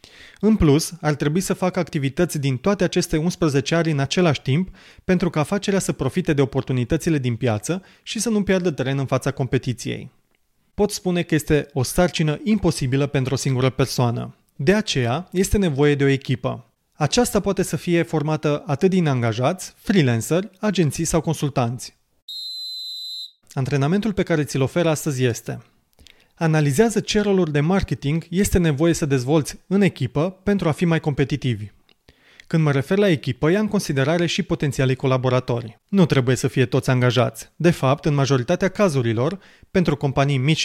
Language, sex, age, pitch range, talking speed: Romanian, male, 30-49, 135-180 Hz, 160 wpm